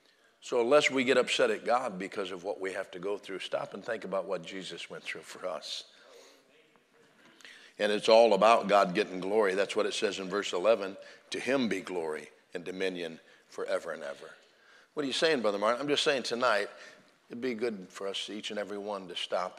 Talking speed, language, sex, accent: 215 wpm, English, male, American